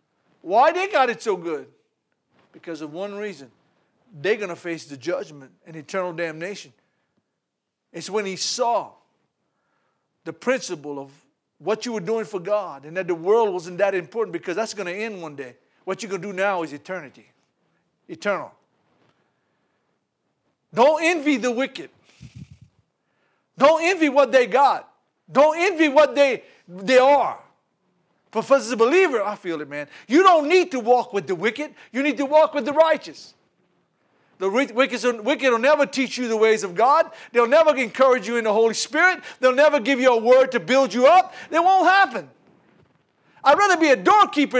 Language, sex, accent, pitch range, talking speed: English, male, American, 200-295 Hz, 180 wpm